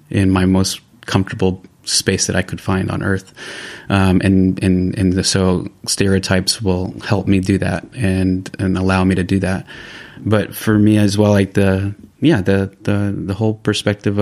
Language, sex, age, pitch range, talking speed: English, male, 30-49, 95-105 Hz, 180 wpm